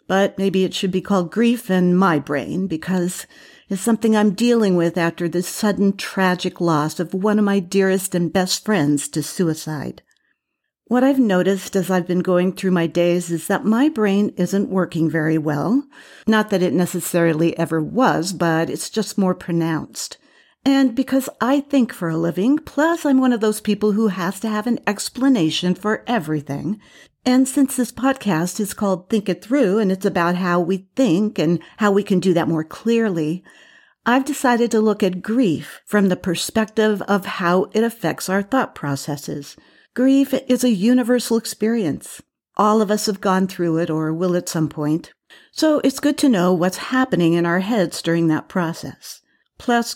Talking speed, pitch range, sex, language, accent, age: 185 wpm, 175-230 Hz, female, English, American, 50-69